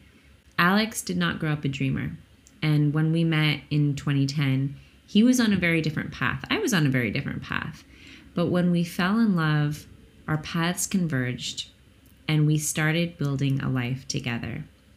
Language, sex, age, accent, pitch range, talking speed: English, female, 20-39, American, 140-175 Hz, 170 wpm